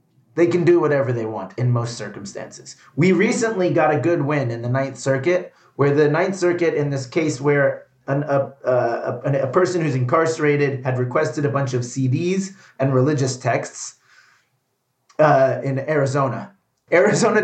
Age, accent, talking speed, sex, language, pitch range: 30-49, American, 165 wpm, male, English, 130-165 Hz